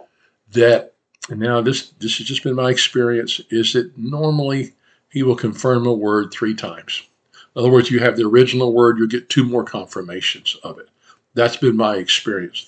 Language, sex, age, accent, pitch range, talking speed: English, male, 50-69, American, 120-150 Hz, 185 wpm